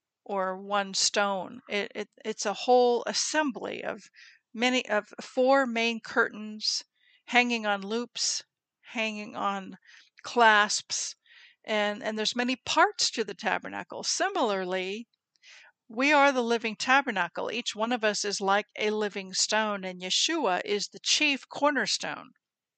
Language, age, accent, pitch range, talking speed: English, 50-69, American, 205-250 Hz, 130 wpm